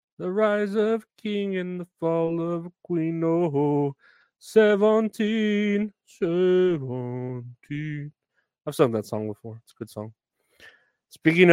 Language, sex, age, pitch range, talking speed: English, male, 30-49, 115-160 Hz, 115 wpm